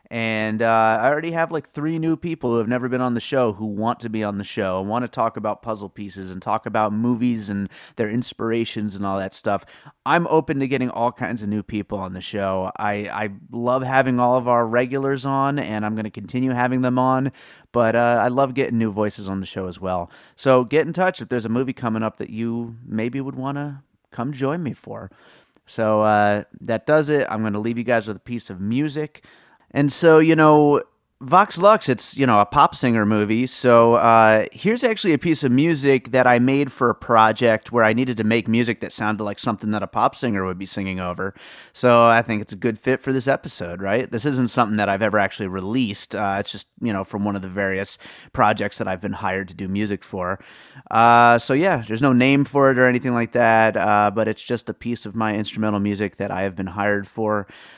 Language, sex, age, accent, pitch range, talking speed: English, male, 30-49, American, 105-130 Hz, 240 wpm